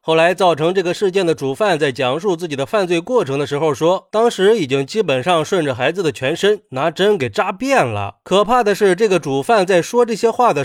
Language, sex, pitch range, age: Chinese, male, 150-210 Hz, 30-49